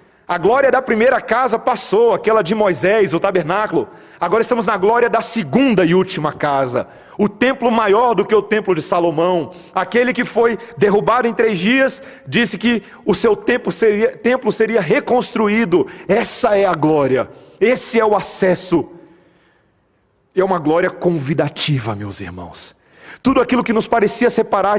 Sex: male